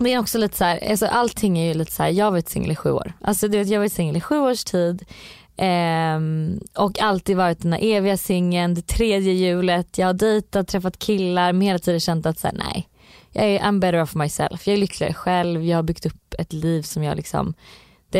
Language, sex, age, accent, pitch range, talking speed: Swedish, female, 20-39, native, 165-195 Hz, 245 wpm